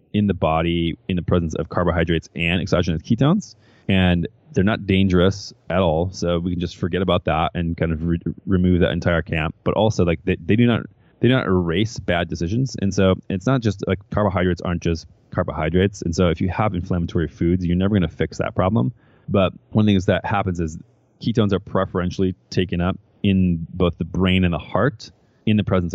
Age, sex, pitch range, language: 20-39, male, 85-105 Hz, English